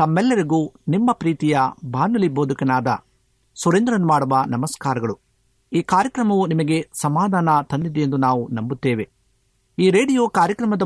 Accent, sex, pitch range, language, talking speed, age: native, male, 130-185 Hz, Kannada, 105 wpm, 50-69